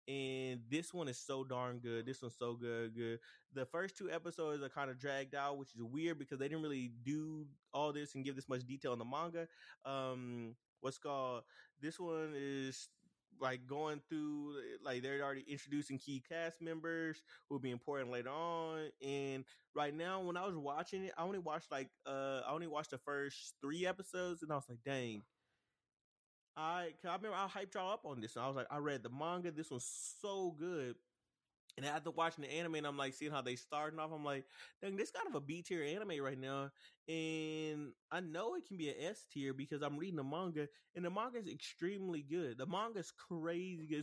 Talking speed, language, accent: 215 wpm, English, American